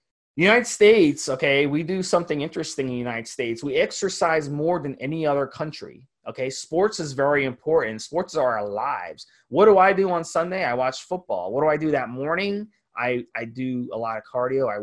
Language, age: English, 20-39